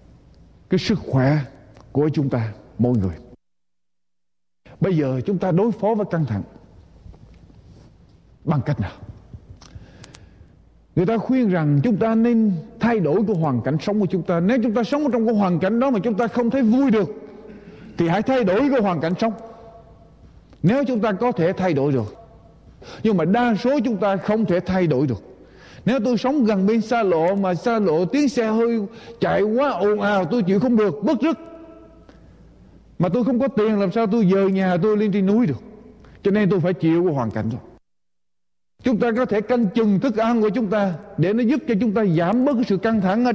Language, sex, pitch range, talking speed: Vietnamese, male, 160-230 Hz, 205 wpm